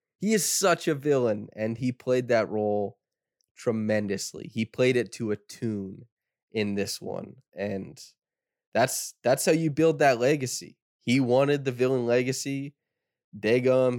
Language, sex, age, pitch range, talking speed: English, male, 20-39, 105-125 Hz, 145 wpm